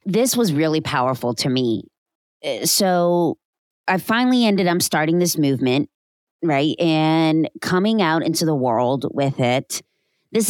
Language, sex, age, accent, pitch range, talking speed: English, female, 30-49, American, 150-190 Hz, 135 wpm